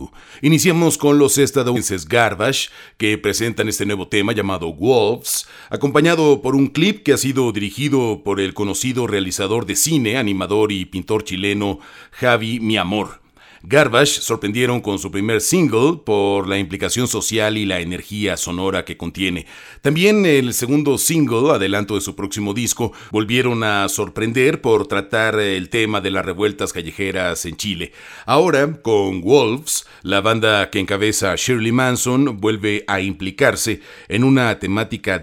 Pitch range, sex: 100-125 Hz, male